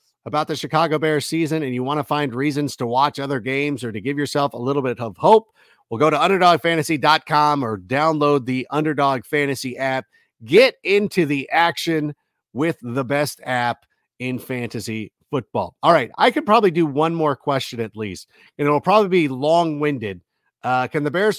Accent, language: American, English